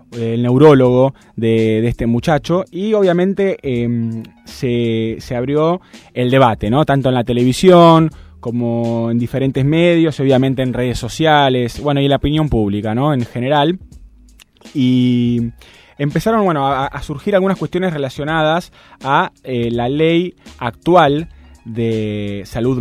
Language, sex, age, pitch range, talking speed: Spanish, male, 20-39, 115-145 Hz, 135 wpm